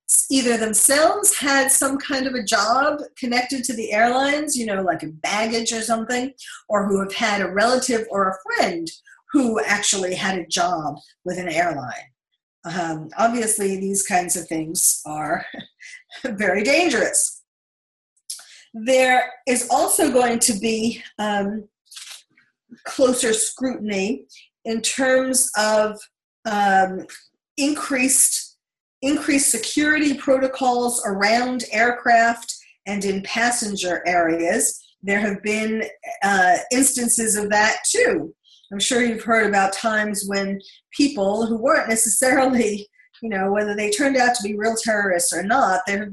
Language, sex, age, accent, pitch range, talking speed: English, female, 50-69, American, 200-255 Hz, 130 wpm